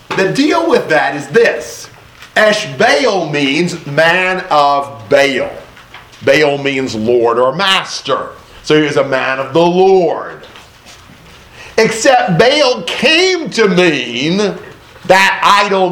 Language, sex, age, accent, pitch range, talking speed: English, male, 50-69, American, 130-190 Hz, 115 wpm